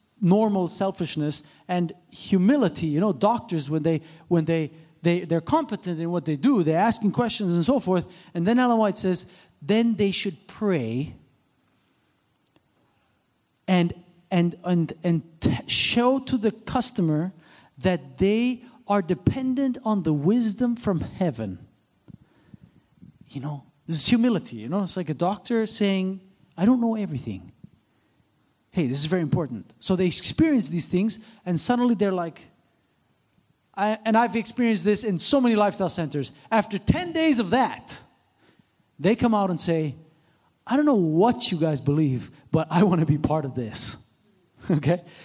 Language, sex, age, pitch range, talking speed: English, male, 50-69, 165-230 Hz, 155 wpm